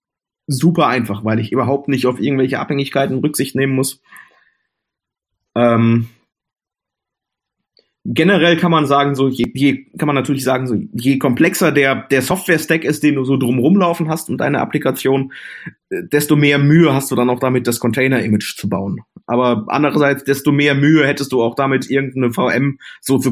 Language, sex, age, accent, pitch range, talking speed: German, male, 20-39, German, 120-150 Hz, 165 wpm